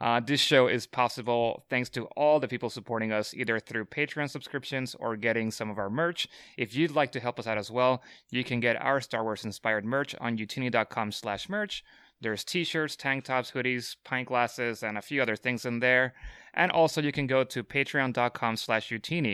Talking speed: 200 wpm